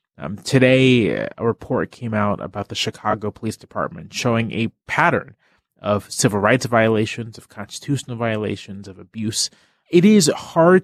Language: English